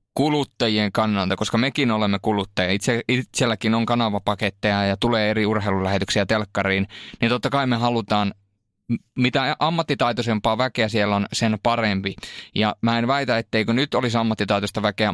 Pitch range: 105-130 Hz